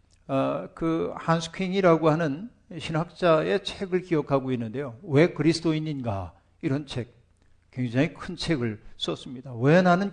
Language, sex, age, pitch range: Korean, male, 50-69, 100-165 Hz